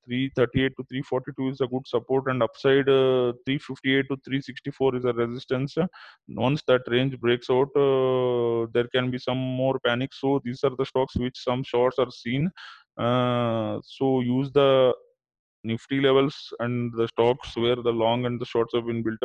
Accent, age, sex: Indian, 20-39, male